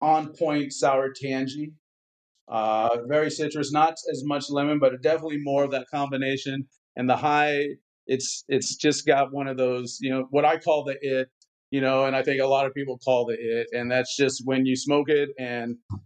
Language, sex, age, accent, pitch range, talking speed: English, male, 40-59, American, 125-145 Hz, 200 wpm